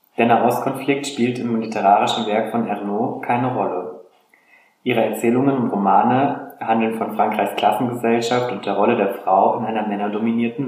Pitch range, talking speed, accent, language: 105-120 Hz, 145 wpm, German, German